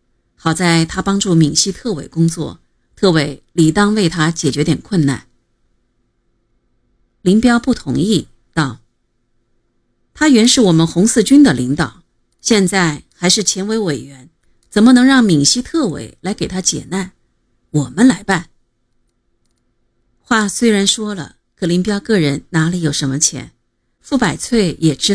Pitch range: 130-205 Hz